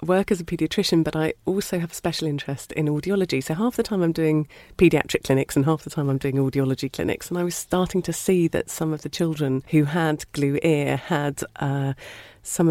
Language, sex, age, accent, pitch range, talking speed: English, female, 40-59, British, 140-170 Hz, 220 wpm